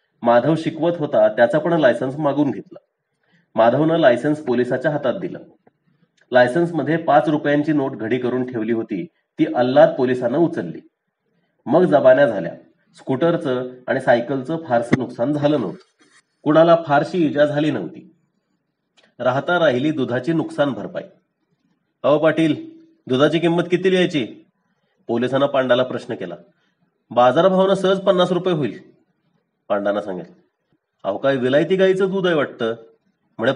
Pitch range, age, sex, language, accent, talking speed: 130-180 Hz, 30-49, male, Marathi, native, 125 wpm